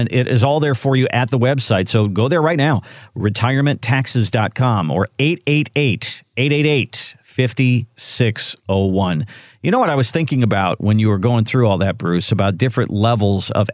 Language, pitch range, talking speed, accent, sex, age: English, 115-145 Hz, 155 wpm, American, male, 50-69